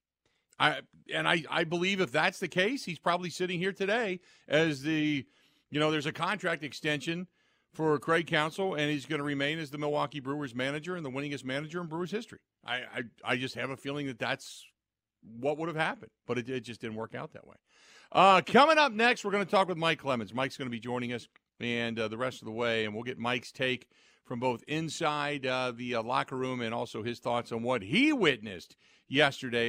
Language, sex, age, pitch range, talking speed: English, male, 50-69, 120-170 Hz, 220 wpm